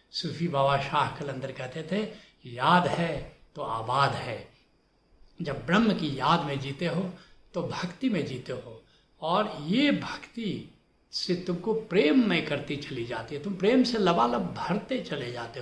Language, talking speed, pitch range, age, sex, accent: Hindi, 160 wpm, 140-190 Hz, 70-89, male, native